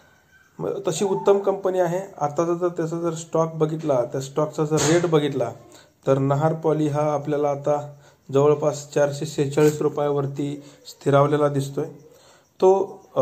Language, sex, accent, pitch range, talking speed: Marathi, male, native, 145-165 Hz, 125 wpm